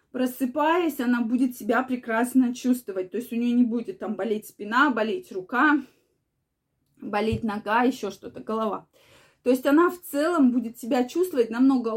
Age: 20-39